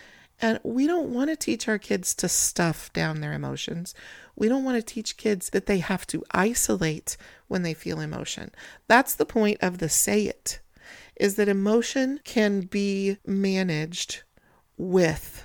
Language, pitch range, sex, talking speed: English, 160-200 Hz, female, 165 wpm